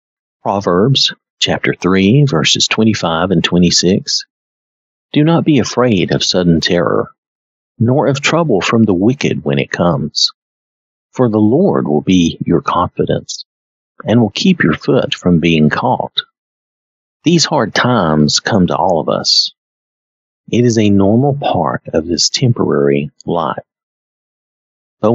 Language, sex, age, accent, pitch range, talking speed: English, male, 50-69, American, 85-120 Hz, 135 wpm